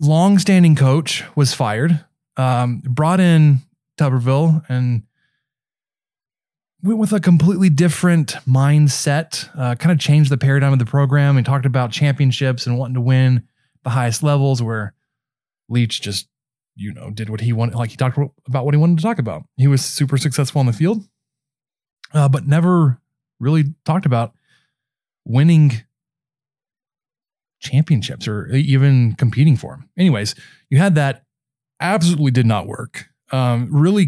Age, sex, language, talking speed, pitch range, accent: 20-39, male, English, 150 wpm, 125-150 Hz, American